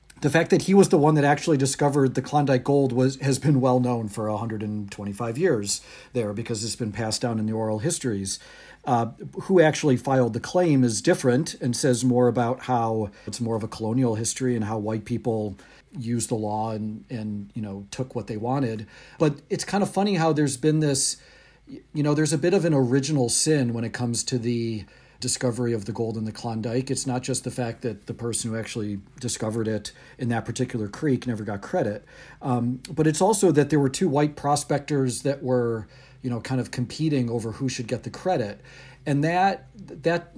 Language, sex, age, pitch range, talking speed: English, male, 40-59, 115-135 Hz, 210 wpm